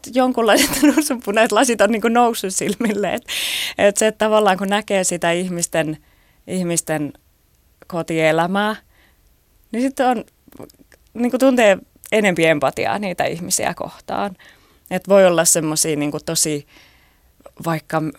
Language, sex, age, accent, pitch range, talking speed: Finnish, female, 20-39, native, 150-200 Hz, 105 wpm